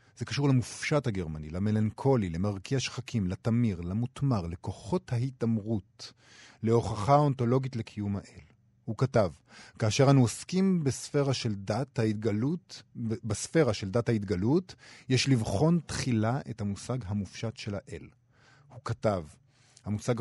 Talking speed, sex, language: 105 wpm, male, Hebrew